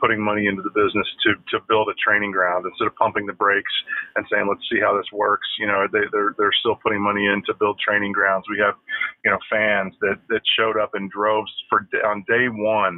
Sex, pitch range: male, 100-110 Hz